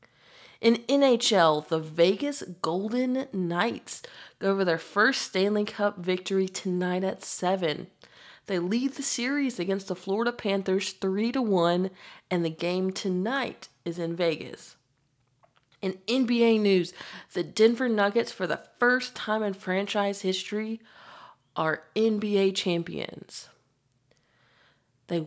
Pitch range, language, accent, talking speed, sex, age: 175-220 Hz, English, American, 115 wpm, female, 30-49